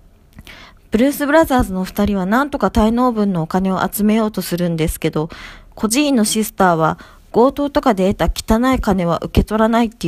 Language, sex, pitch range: Japanese, female, 175-255 Hz